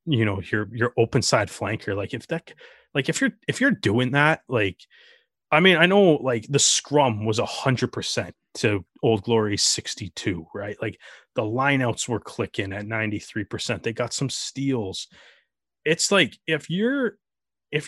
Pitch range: 105-150 Hz